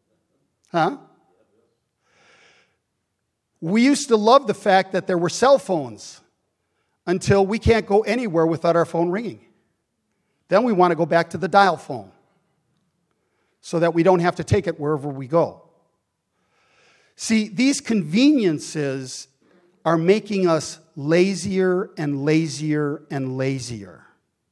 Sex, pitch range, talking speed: male, 155-200 Hz, 130 wpm